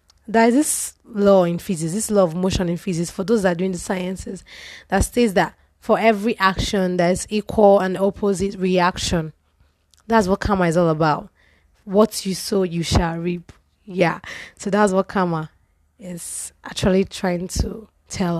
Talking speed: 170 wpm